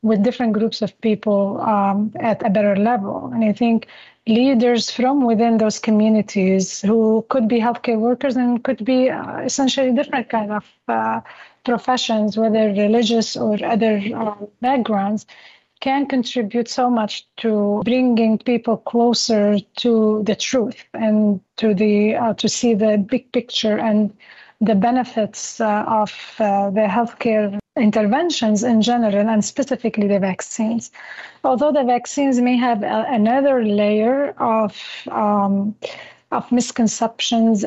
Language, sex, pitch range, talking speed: English, female, 210-240 Hz, 135 wpm